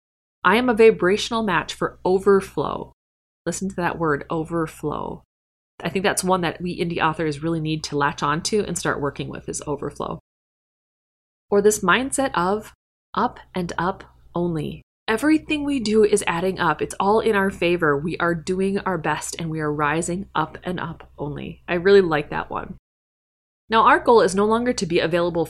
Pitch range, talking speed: 160-205 Hz, 180 wpm